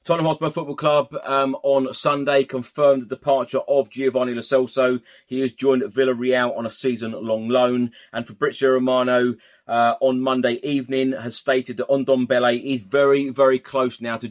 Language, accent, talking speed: English, British, 165 wpm